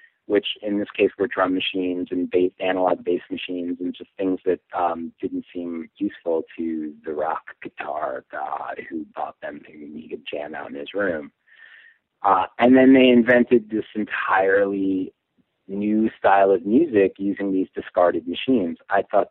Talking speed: 160 wpm